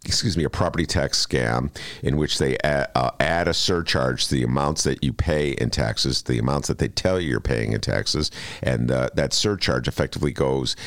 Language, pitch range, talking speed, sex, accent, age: English, 70-105 Hz, 210 wpm, male, American, 50-69